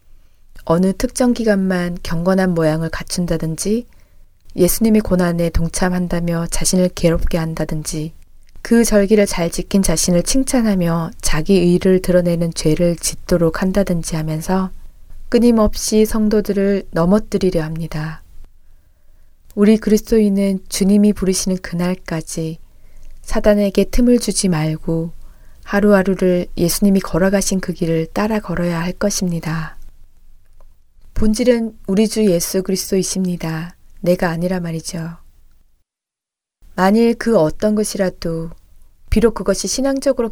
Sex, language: female, Korean